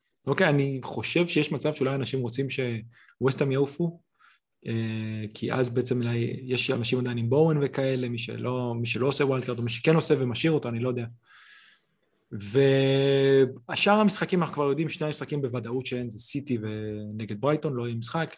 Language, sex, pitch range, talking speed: Hebrew, male, 120-155 Hz, 165 wpm